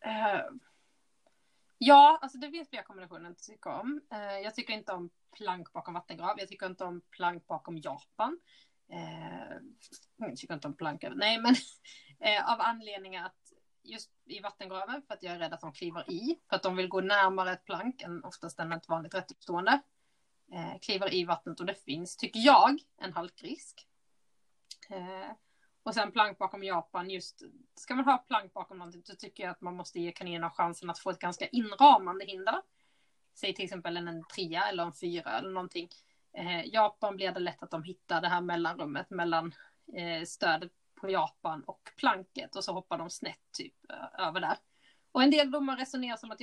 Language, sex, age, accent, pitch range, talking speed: Swedish, female, 30-49, native, 175-245 Hz, 190 wpm